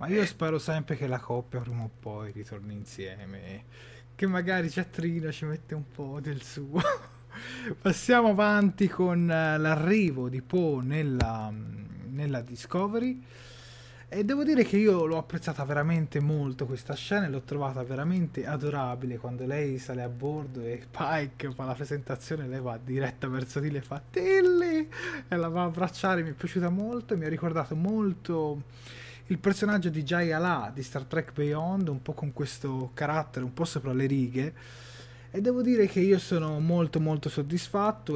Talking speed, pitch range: 165 wpm, 125-170 Hz